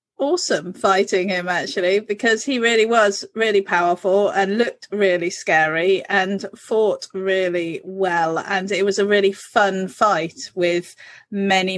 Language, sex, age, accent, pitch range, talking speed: English, female, 30-49, British, 180-230 Hz, 140 wpm